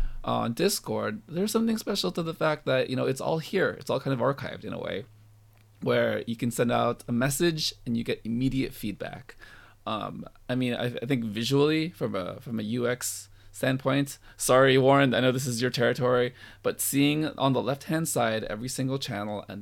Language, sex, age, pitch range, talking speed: English, male, 20-39, 110-140 Hz, 195 wpm